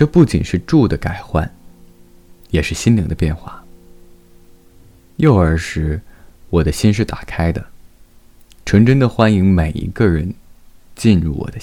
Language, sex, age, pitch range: Chinese, male, 20-39, 85-100 Hz